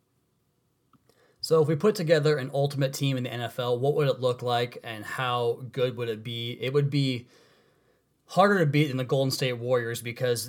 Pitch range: 120-135 Hz